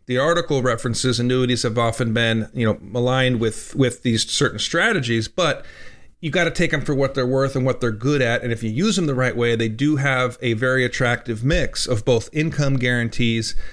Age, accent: 40-59, American